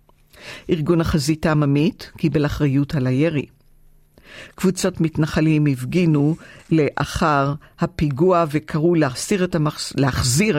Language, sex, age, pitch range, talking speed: Hebrew, female, 50-69, 145-170 Hz, 95 wpm